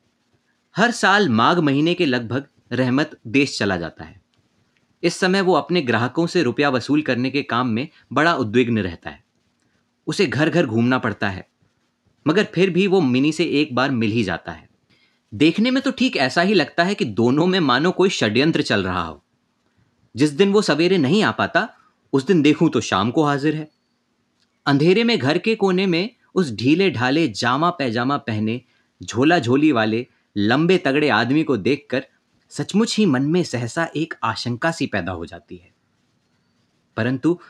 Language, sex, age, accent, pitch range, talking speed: Hindi, male, 30-49, native, 120-175 Hz, 175 wpm